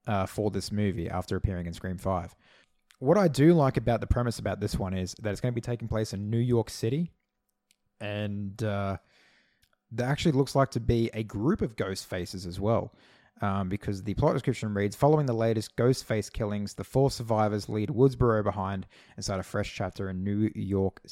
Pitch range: 100-135 Hz